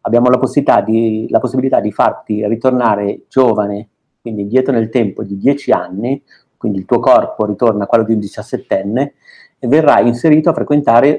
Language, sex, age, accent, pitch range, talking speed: Italian, male, 50-69, native, 105-120 Hz, 170 wpm